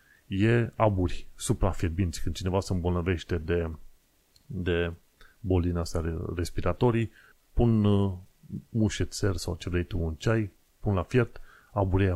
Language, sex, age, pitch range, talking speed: Romanian, male, 30-49, 90-105 Hz, 115 wpm